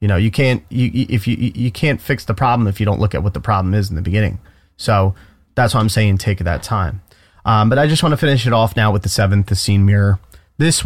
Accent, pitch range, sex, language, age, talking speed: American, 100-130 Hz, male, English, 30-49, 270 wpm